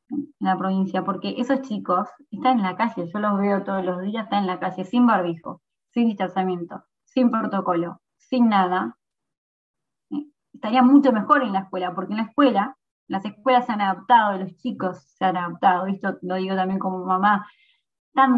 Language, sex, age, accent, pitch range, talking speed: Spanish, female, 20-39, Argentinian, 185-235 Hz, 180 wpm